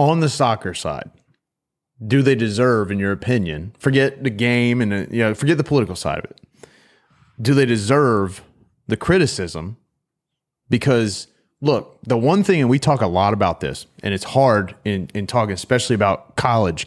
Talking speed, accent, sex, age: 165 wpm, American, male, 30-49